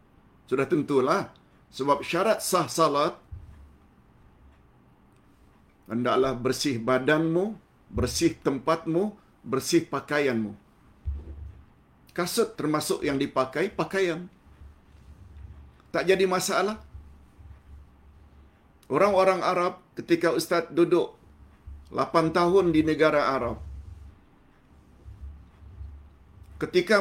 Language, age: Malayalam, 50-69